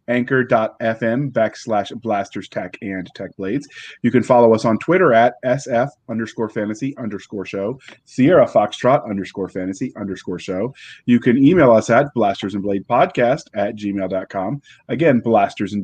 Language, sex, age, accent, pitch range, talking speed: English, male, 30-49, American, 110-140 Hz, 145 wpm